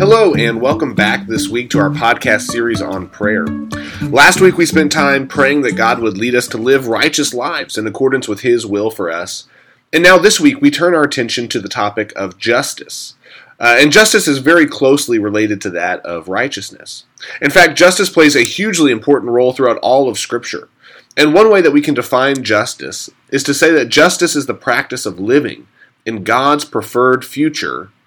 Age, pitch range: 30-49, 120-155 Hz